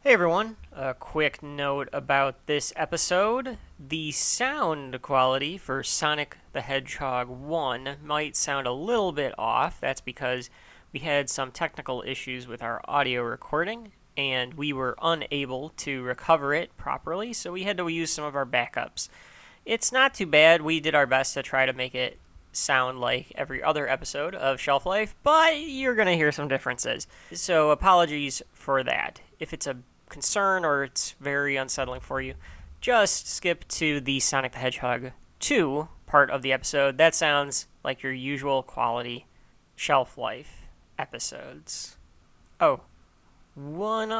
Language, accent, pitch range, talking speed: English, American, 130-175 Hz, 155 wpm